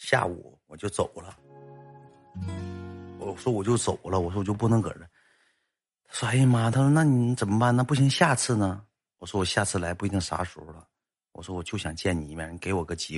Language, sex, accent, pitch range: Chinese, male, native, 85-115 Hz